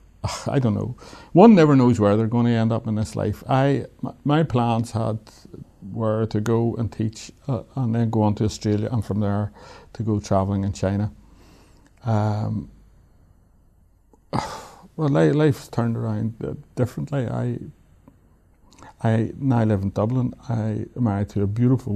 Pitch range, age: 105-125 Hz, 60-79